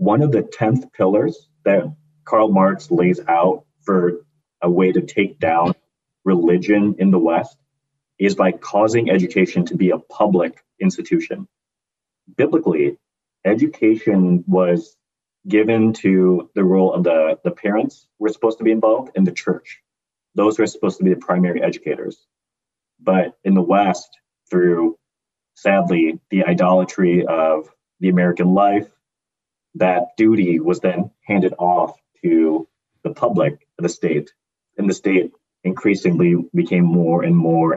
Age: 30-49